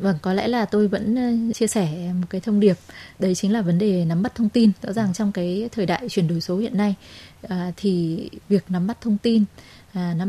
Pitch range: 180-220 Hz